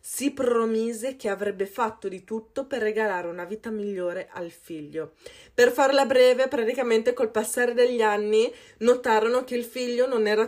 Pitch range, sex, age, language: 200-245 Hz, female, 20-39, Italian